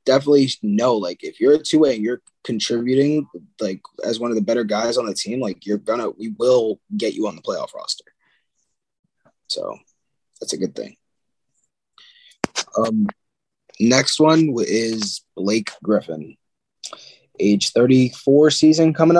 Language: English